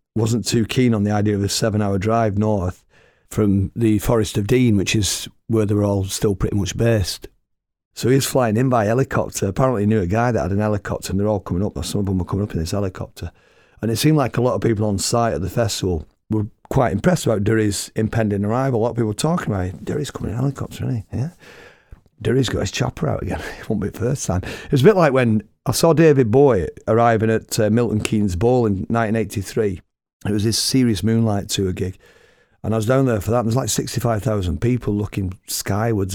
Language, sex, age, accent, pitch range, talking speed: English, male, 40-59, British, 100-120 Hz, 240 wpm